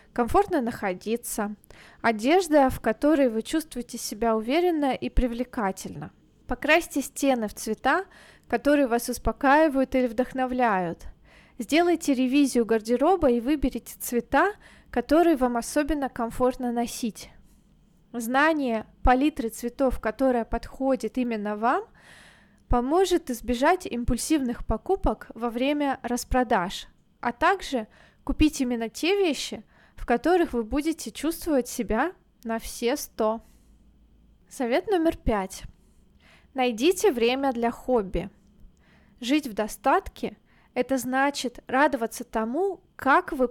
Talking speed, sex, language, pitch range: 105 wpm, female, Russian, 235-290 Hz